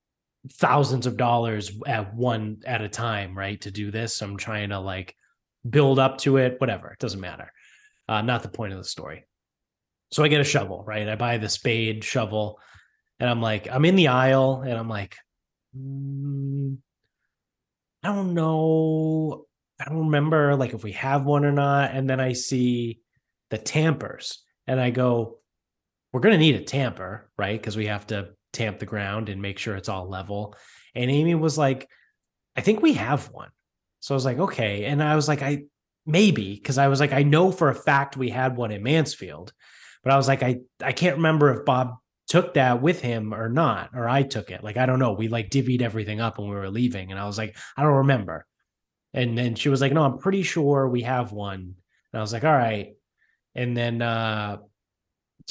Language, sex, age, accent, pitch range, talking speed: English, male, 20-39, American, 110-140 Hz, 205 wpm